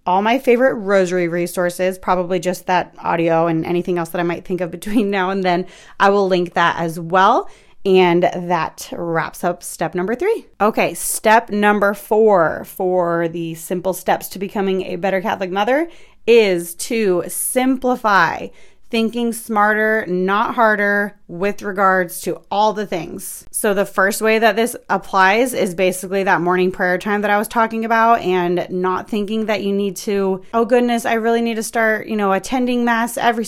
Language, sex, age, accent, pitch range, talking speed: English, female, 30-49, American, 180-220 Hz, 175 wpm